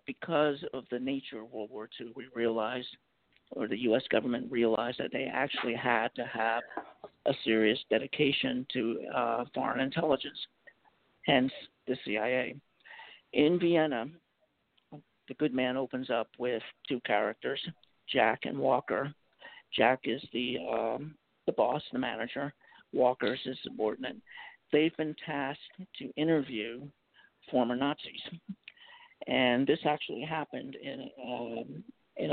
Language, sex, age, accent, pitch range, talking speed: English, male, 50-69, American, 125-150 Hz, 130 wpm